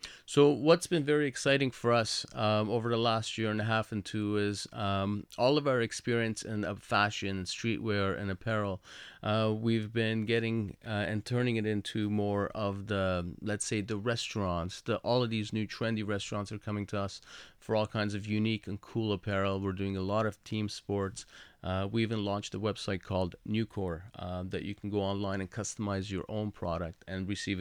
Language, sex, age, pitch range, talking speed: English, male, 30-49, 95-110 Hz, 200 wpm